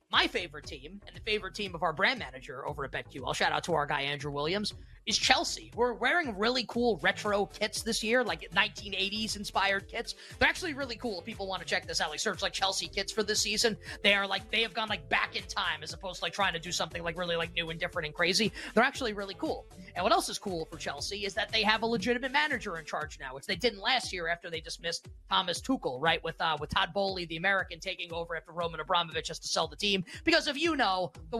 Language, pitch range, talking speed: English, 180-235 Hz, 260 wpm